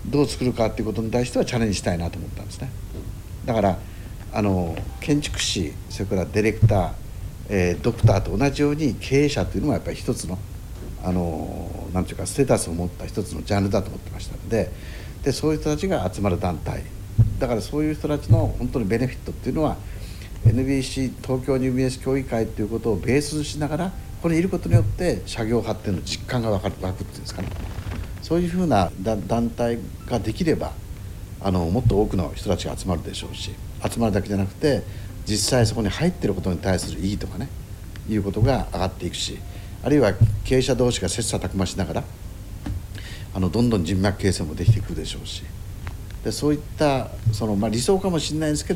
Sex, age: male, 60-79